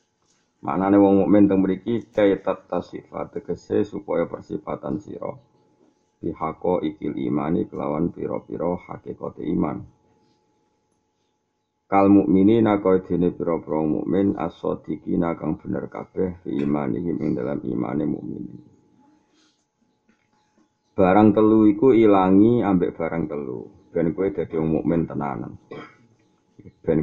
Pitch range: 80-95 Hz